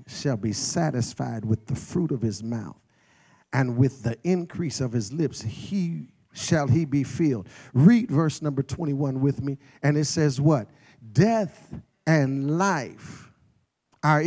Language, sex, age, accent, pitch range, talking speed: English, male, 50-69, American, 130-170 Hz, 145 wpm